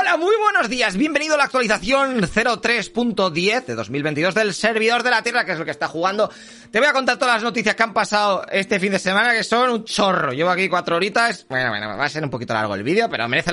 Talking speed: 250 wpm